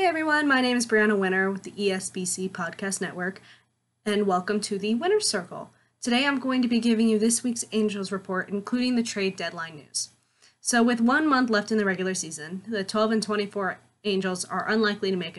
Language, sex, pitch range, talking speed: English, female, 180-215 Hz, 205 wpm